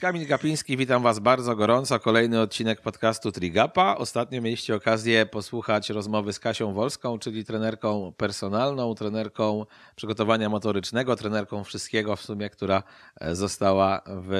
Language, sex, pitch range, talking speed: Polish, male, 100-115 Hz, 130 wpm